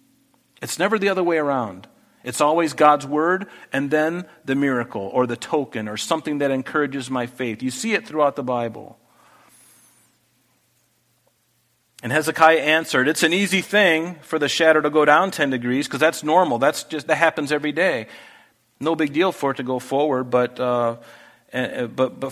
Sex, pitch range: male, 125-160 Hz